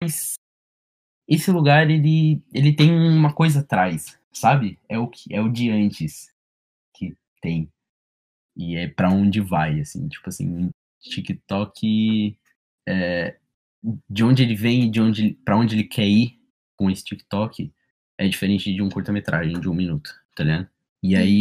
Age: 20-39